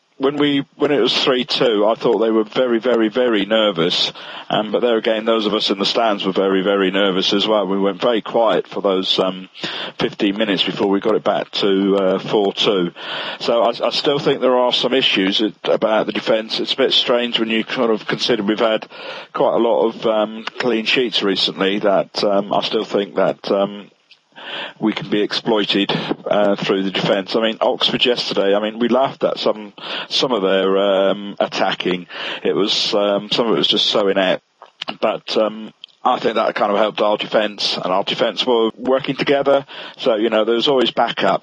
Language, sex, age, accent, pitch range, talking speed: English, male, 50-69, British, 100-115 Hz, 205 wpm